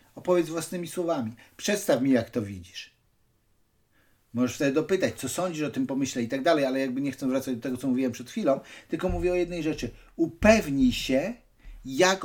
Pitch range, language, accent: 130-195 Hz, Polish, native